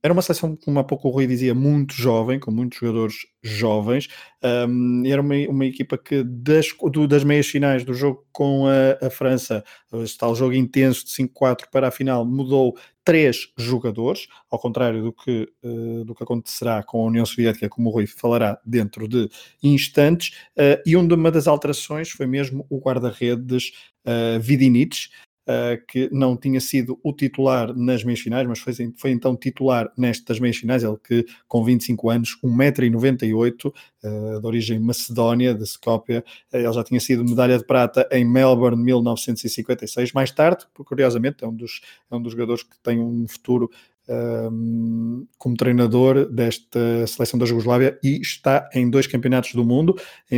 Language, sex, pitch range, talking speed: Portuguese, male, 120-135 Hz, 170 wpm